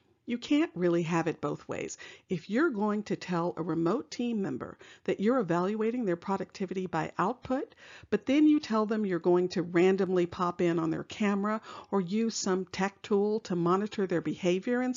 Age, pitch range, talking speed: 50-69, 170-225 Hz, 190 wpm